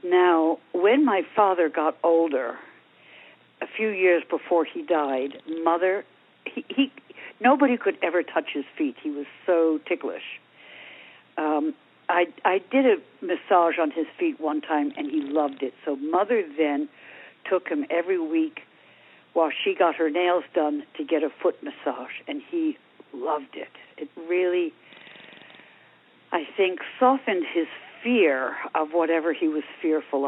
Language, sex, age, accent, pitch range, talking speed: English, female, 60-79, American, 160-255 Hz, 145 wpm